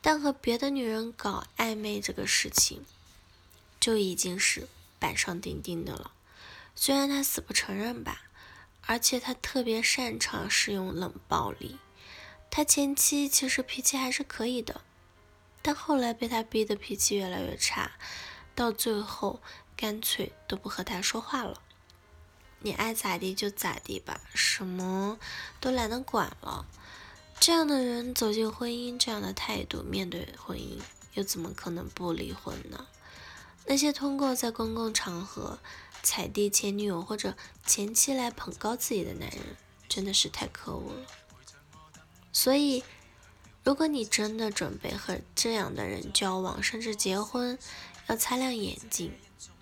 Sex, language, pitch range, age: female, Chinese, 190-255 Hz, 10-29